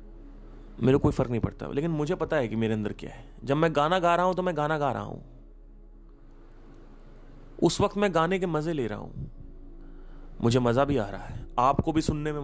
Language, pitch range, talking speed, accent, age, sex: Hindi, 105-160 Hz, 215 wpm, native, 30-49, male